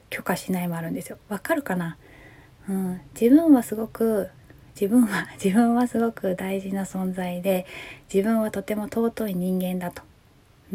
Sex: female